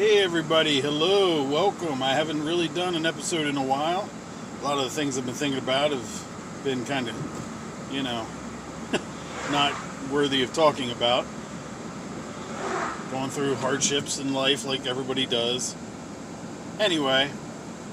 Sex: male